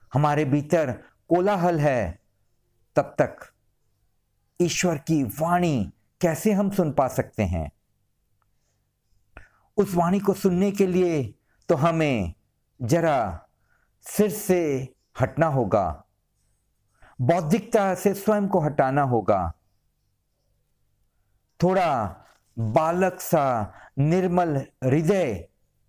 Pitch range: 105-175 Hz